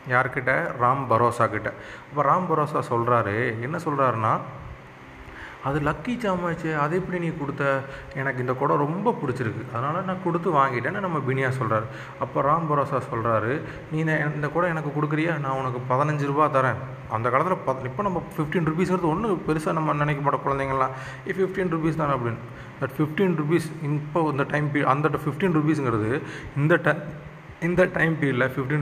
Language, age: Tamil, 30-49